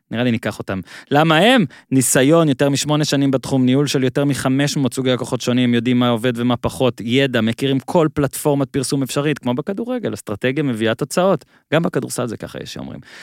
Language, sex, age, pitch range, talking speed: Hebrew, male, 20-39, 120-145 Hz, 185 wpm